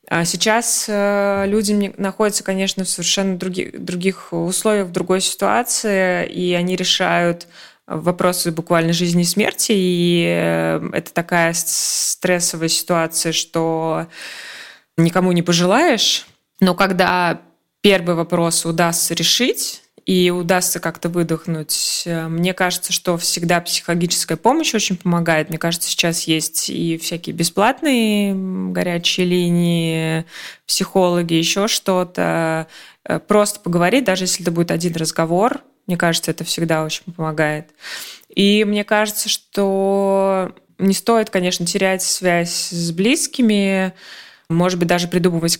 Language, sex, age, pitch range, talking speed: Russian, female, 20-39, 165-190 Hz, 115 wpm